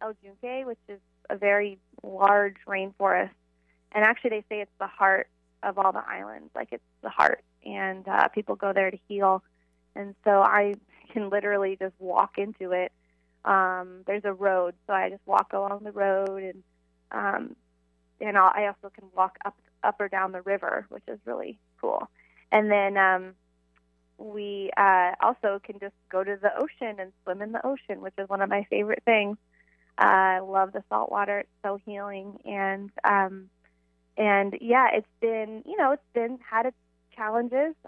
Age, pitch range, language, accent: 20-39, 185-210 Hz, English, American